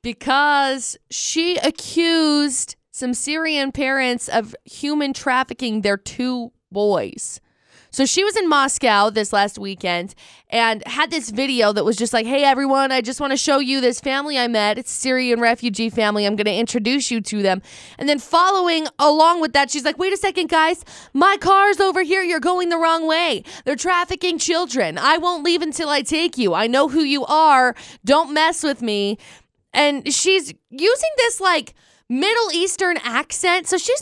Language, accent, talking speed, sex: English, American, 180 wpm, female